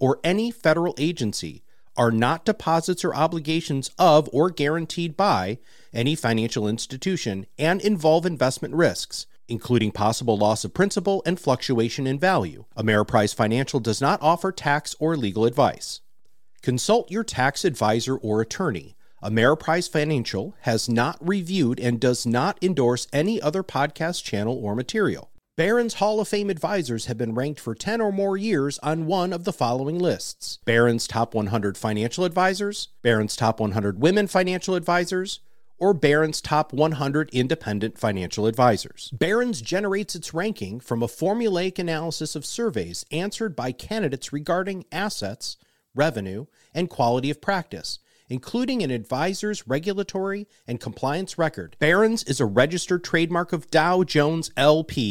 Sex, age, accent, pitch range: male, 40-59, American, 120-180 Hz